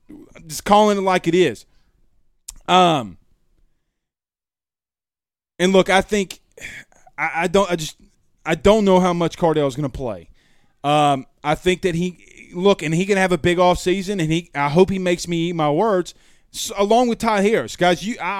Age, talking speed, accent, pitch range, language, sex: 30-49, 185 wpm, American, 145-190 Hz, English, male